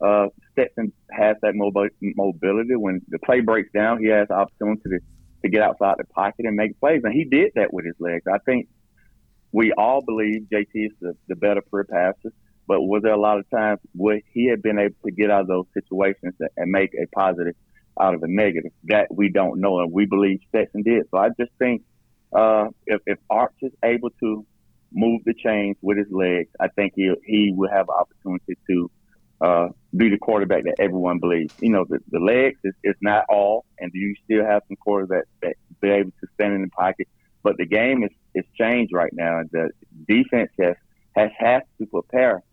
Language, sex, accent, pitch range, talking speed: English, male, American, 95-110 Hz, 210 wpm